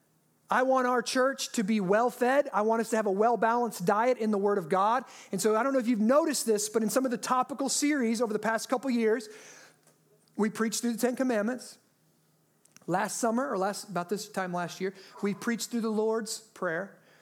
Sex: male